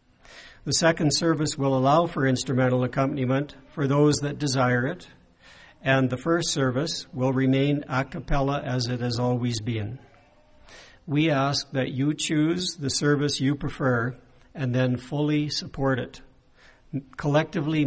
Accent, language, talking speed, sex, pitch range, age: American, English, 140 wpm, male, 130-150 Hz, 60-79